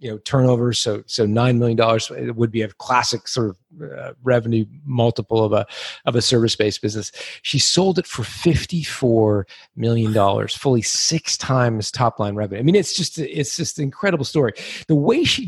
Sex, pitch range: male, 120-160 Hz